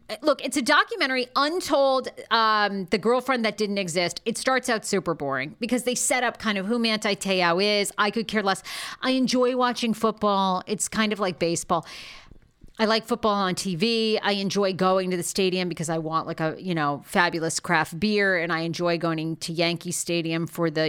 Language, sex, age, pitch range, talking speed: English, female, 40-59, 175-240 Hz, 200 wpm